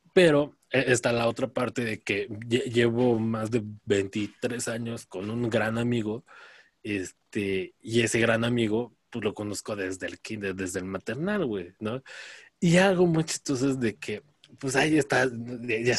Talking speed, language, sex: 160 wpm, Spanish, male